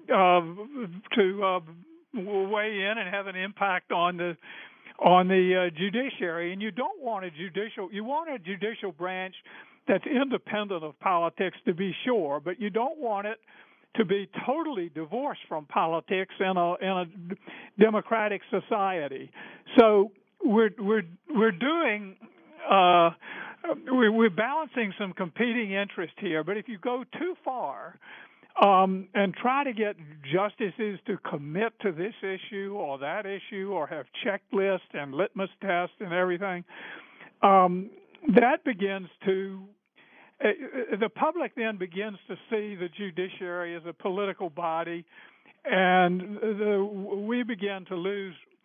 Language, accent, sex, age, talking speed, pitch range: English, American, male, 60-79, 140 wpm, 185-220 Hz